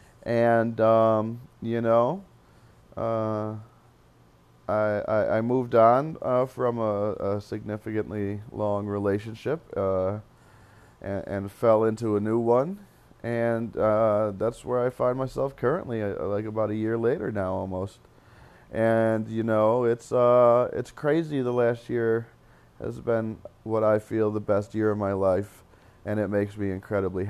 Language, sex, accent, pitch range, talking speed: English, male, American, 100-120 Hz, 145 wpm